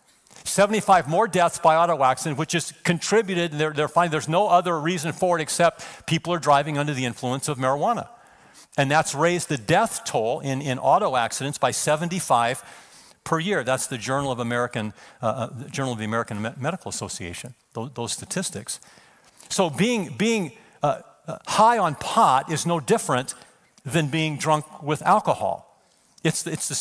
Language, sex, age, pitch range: English, male, 50-69, 135-175 Hz